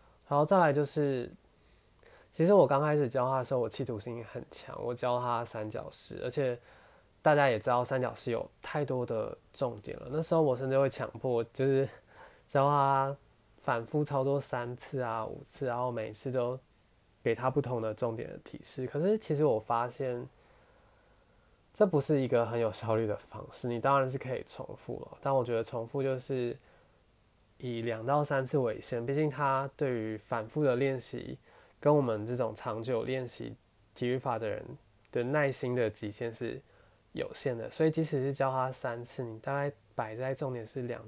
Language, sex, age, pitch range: Chinese, male, 20-39, 115-135 Hz